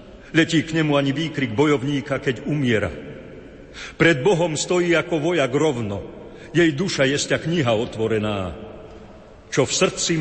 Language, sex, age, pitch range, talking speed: Slovak, male, 50-69, 100-135 Hz, 130 wpm